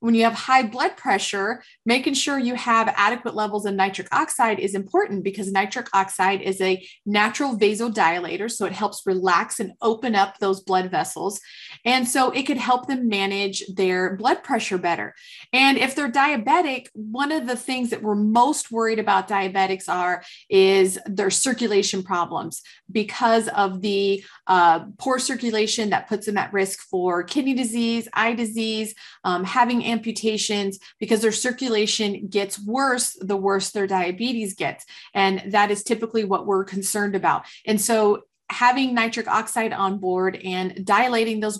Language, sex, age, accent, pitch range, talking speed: English, female, 30-49, American, 195-245 Hz, 160 wpm